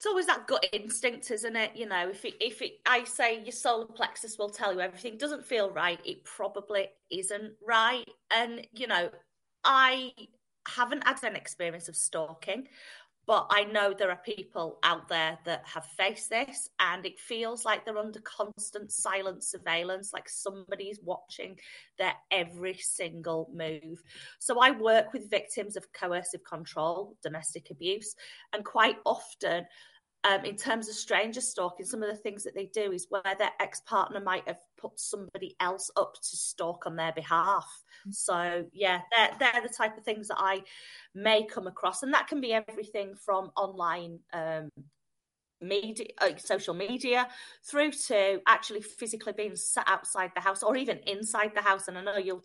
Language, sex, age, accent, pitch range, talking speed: English, female, 30-49, British, 180-230 Hz, 170 wpm